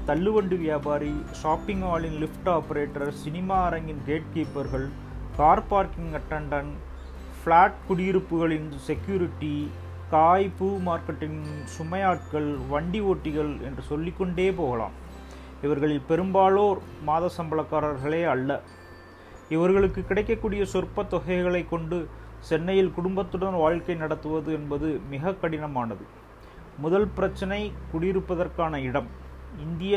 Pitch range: 135-180 Hz